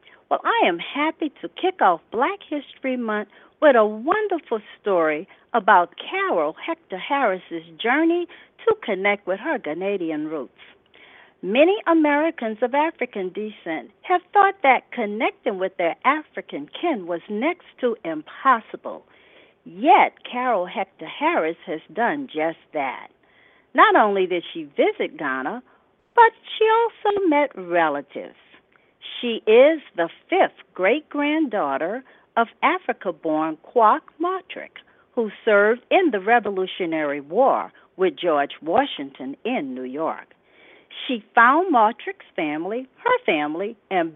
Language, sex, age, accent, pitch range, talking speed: English, female, 50-69, American, 205-345 Hz, 125 wpm